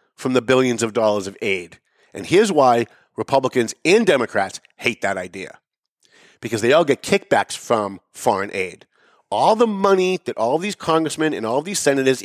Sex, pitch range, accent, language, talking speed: male, 135-180 Hz, American, English, 170 wpm